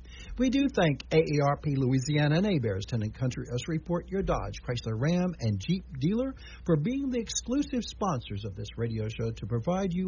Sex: male